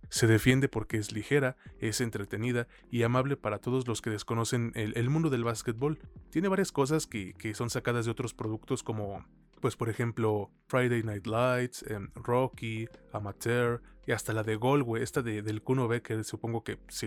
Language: Spanish